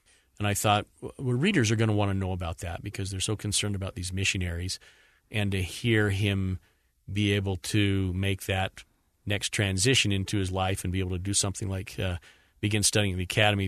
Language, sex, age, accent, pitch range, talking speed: English, male, 40-59, American, 90-105 Hz, 200 wpm